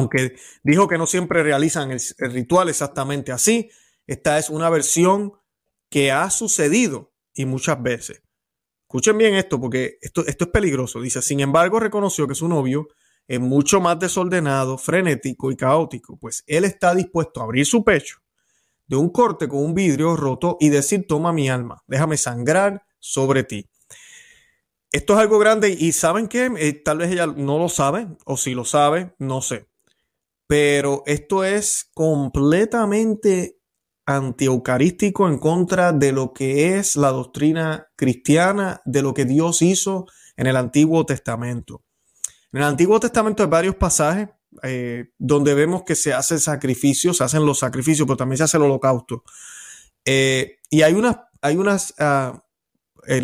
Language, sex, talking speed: Spanish, male, 160 wpm